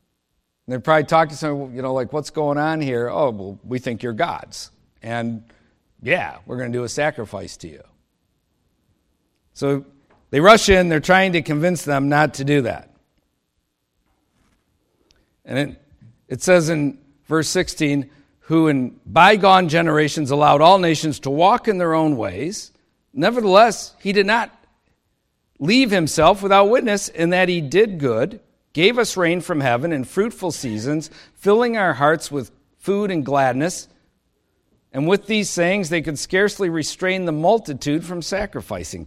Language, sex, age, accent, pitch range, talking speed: English, male, 50-69, American, 140-190 Hz, 155 wpm